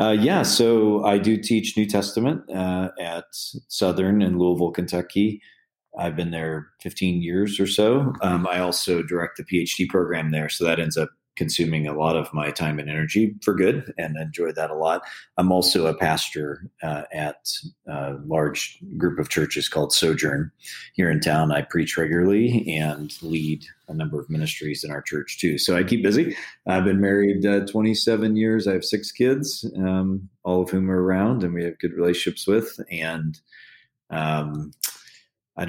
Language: English